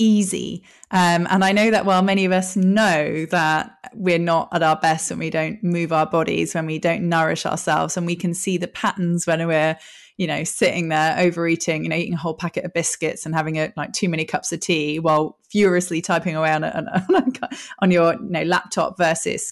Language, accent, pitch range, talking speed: English, British, 170-210 Hz, 225 wpm